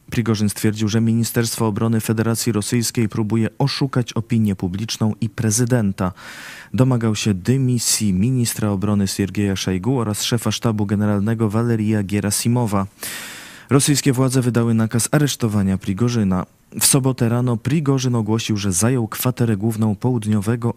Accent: native